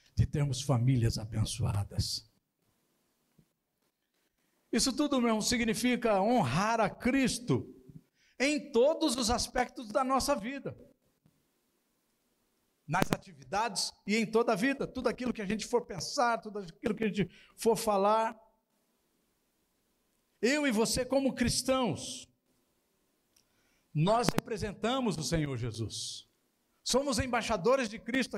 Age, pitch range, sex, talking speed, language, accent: 60-79, 160-245 Hz, male, 110 wpm, Portuguese, Brazilian